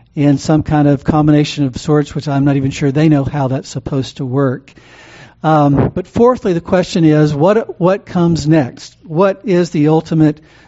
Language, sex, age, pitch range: English, male, 60-79, 135-170 Hz